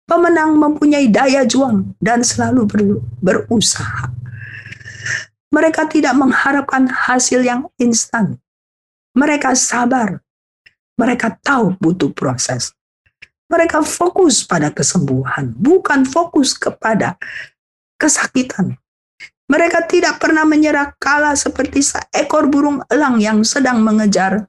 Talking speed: 95 wpm